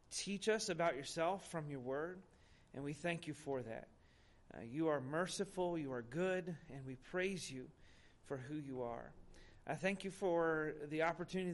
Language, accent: English, American